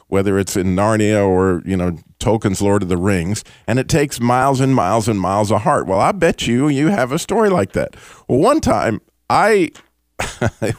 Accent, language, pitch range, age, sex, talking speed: American, English, 85-115 Hz, 50-69, male, 205 wpm